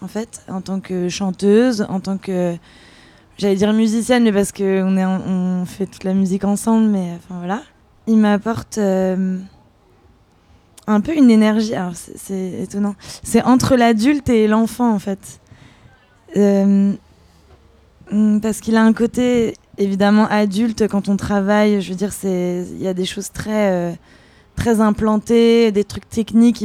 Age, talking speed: 20-39, 150 wpm